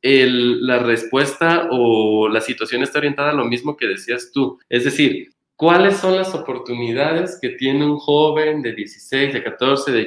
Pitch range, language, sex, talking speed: 120-150 Hz, Spanish, male, 175 wpm